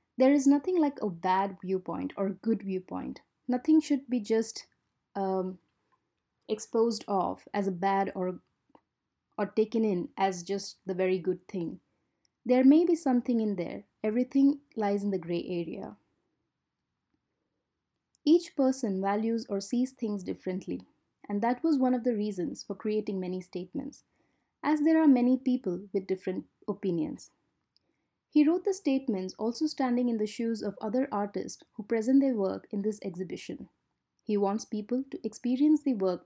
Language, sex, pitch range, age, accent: Japanese, female, 195-260 Hz, 20-39, Indian